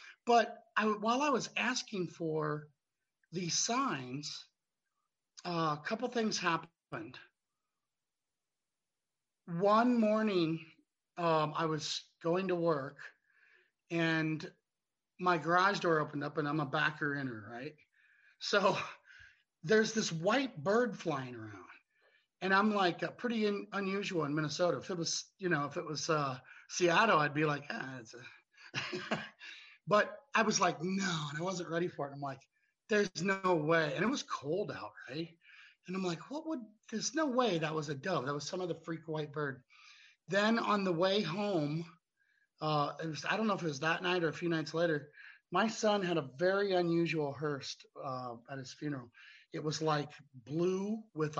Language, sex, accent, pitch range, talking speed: English, male, American, 150-195 Hz, 170 wpm